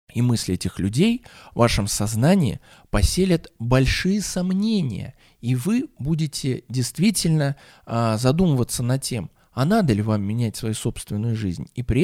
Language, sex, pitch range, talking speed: Russian, male, 105-140 Hz, 135 wpm